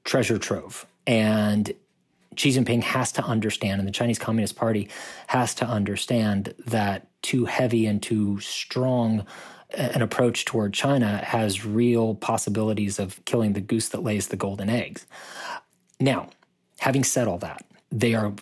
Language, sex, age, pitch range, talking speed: English, male, 30-49, 105-120 Hz, 145 wpm